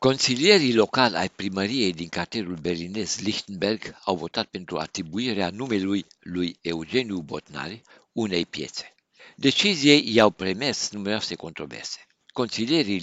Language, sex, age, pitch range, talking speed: Romanian, male, 60-79, 90-120 Hz, 110 wpm